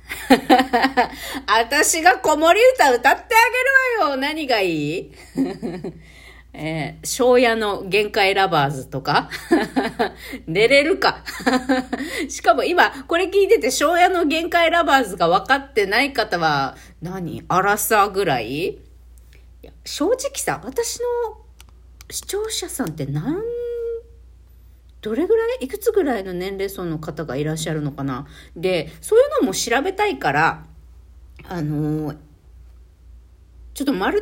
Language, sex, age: Japanese, female, 40-59